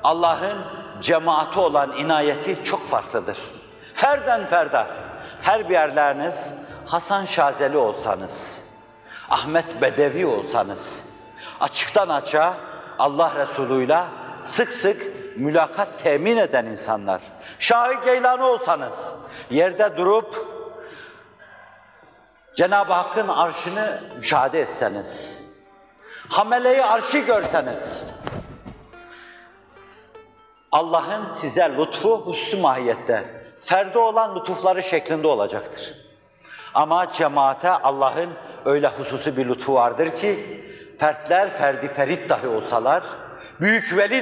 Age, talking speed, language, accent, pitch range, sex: 60-79, 90 wpm, Turkish, native, 135-220 Hz, male